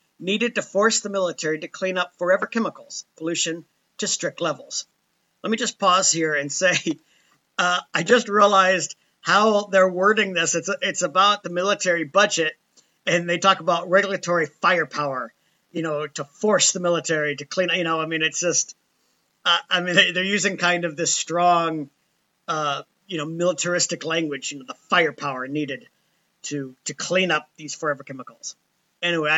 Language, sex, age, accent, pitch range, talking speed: English, male, 50-69, American, 160-200 Hz, 170 wpm